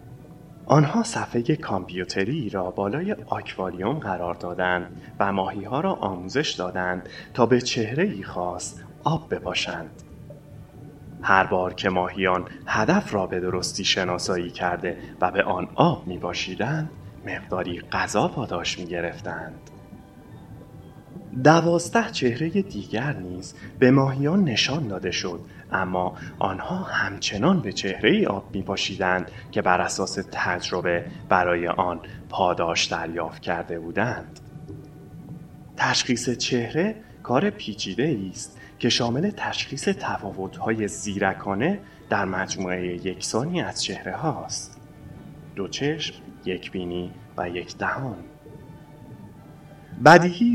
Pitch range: 90-135 Hz